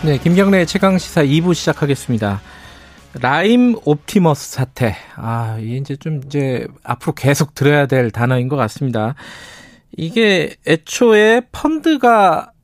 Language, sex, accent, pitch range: Korean, male, native, 135-225 Hz